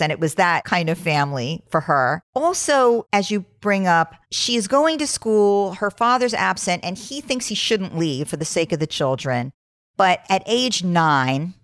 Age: 50-69